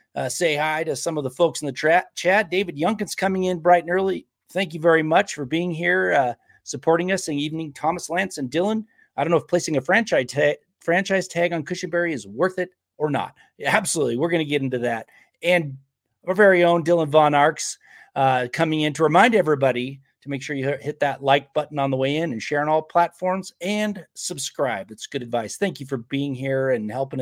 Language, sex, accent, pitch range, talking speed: English, male, American, 140-185 Hz, 225 wpm